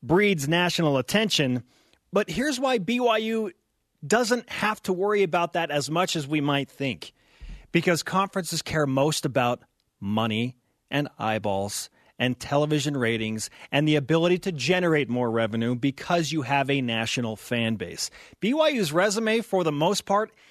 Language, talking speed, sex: English, 145 wpm, male